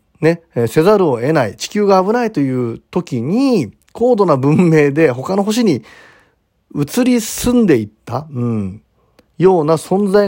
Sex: male